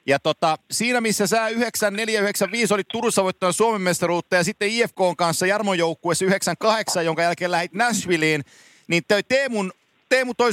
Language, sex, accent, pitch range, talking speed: Finnish, male, native, 170-210 Hz, 155 wpm